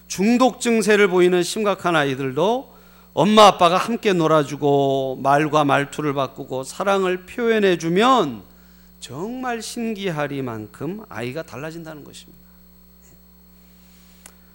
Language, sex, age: Korean, male, 40-59